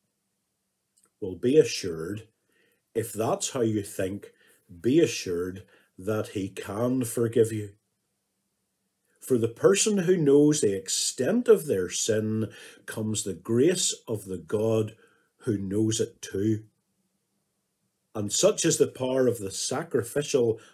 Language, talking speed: English, 125 wpm